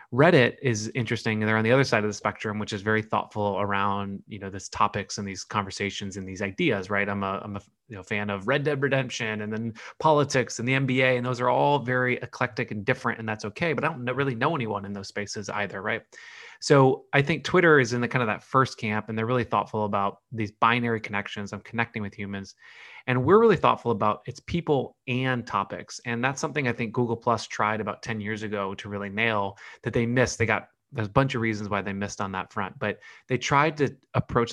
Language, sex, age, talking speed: English, male, 20-39, 235 wpm